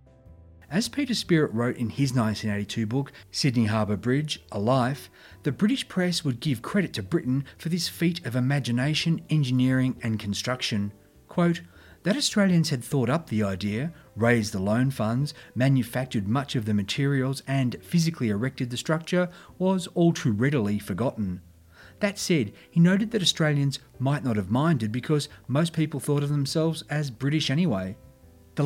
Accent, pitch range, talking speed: Australian, 110-155 Hz, 160 wpm